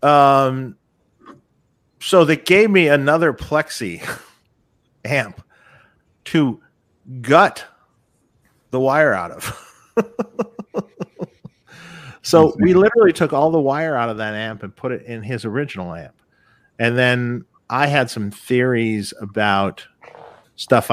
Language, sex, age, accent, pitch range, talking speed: English, male, 50-69, American, 100-135 Hz, 115 wpm